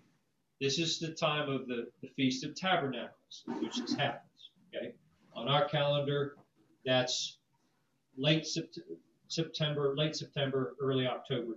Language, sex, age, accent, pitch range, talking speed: English, male, 40-59, American, 125-155 Hz, 130 wpm